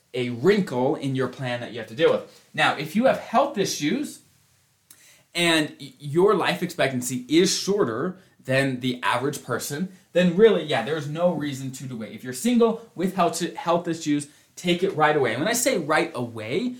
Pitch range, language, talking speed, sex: 130-190 Hz, English, 185 wpm, male